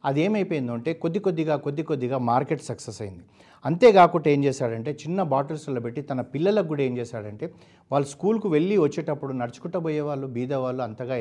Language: Telugu